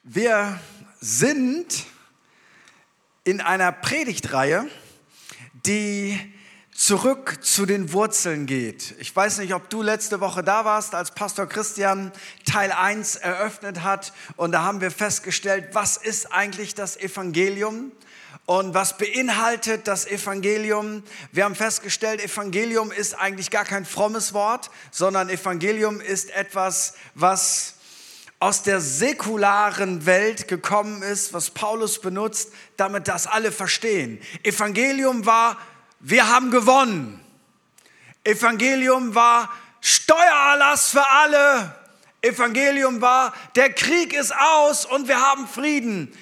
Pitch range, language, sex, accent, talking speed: 195-245 Hz, German, male, German, 115 wpm